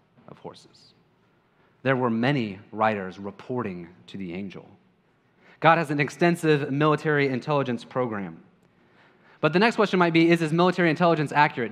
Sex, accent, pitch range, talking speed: male, American, 125-165 Hz, 145 wpm